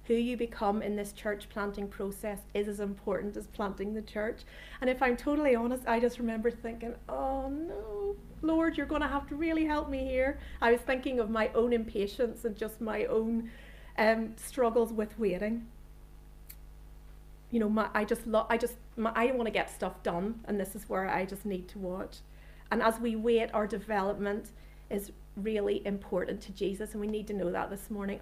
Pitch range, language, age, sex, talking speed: 195-230 Hz, English, 40-59, female, 200 wpm